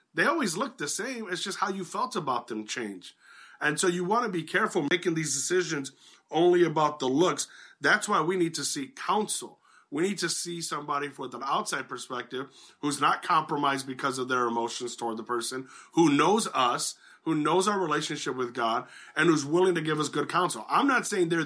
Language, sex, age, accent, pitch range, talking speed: English, male, 30-49, American, 135-175 Hz, 205 wpm